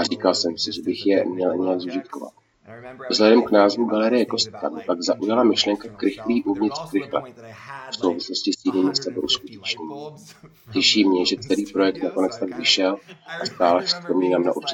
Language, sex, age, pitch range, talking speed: Czech, male, 30-49, 90-110 Hz, 160 wpm